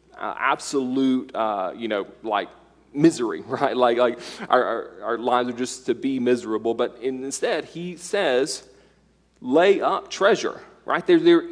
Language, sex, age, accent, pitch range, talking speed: English, male, 30-49, American, 115-155 Hz, 155 wpm